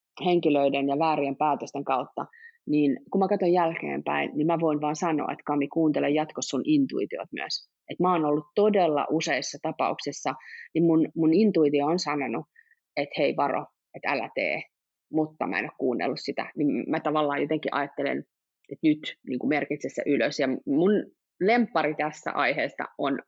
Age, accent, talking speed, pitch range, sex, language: 30-49, native, 165 wpm, 155-215 Hz, female, Finnish